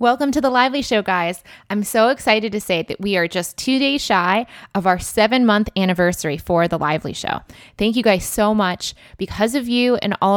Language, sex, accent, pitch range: English, female, American, 170-215 Hz